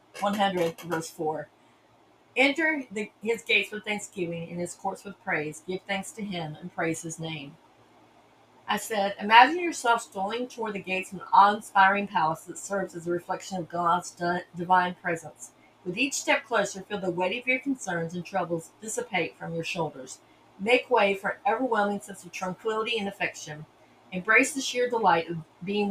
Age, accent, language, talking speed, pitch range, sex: 40-59, American, English, 170 wpm, 170-205 Hz, female